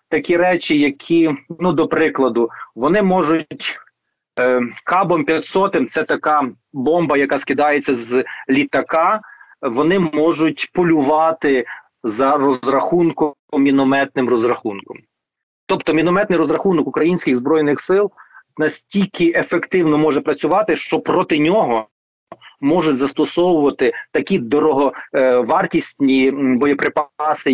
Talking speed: 90 wpm